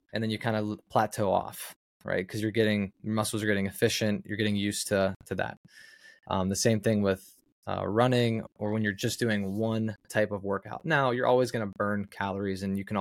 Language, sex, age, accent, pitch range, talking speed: English, male, 20-39, American, 100-115 Hz, 220 wpm